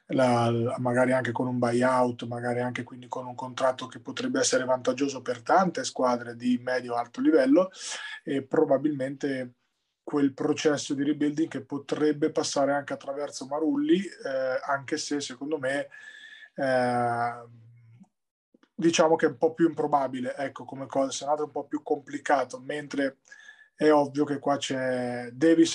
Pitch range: 130-165 Hz